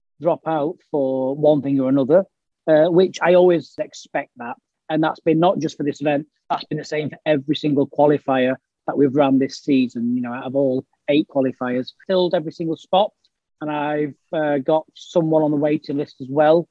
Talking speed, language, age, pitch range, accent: 200 wpm, English, 30-49, 145-175 Hz, British